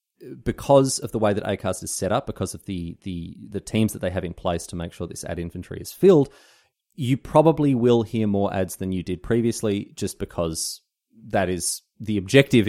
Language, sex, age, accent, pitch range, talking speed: English, male, 30-49, Australian, 95-120 Hz, 210 wpm